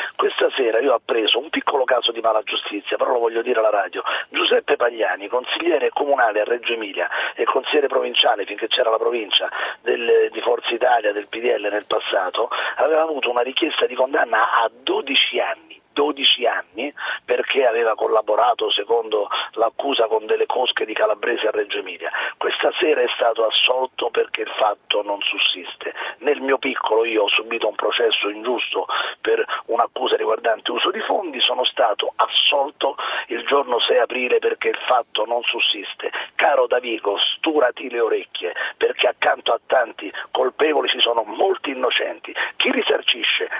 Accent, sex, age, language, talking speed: native, male, 40-59, Italian, 160 wpm